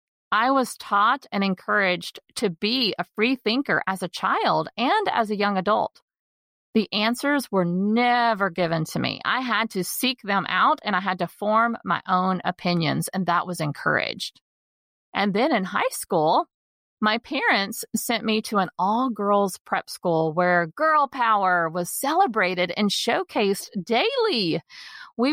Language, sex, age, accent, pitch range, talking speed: English, female, 40-59, American, 185-245 Hz, 160 wpm